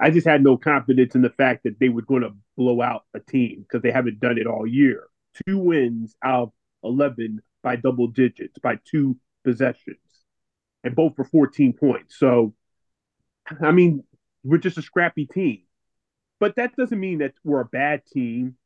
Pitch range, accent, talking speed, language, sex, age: 125-160 Hz, American, 180 wpm, English, male, 30-49